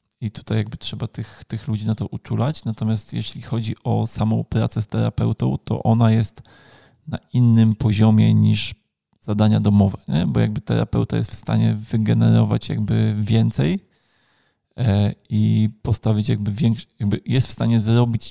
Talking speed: 150 wpm